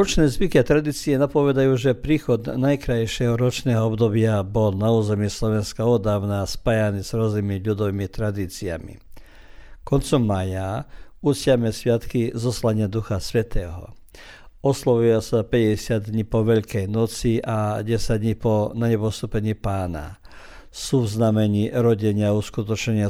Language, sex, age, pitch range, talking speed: Croatian, male, 50-69, 105-120 Hz, 115 wpm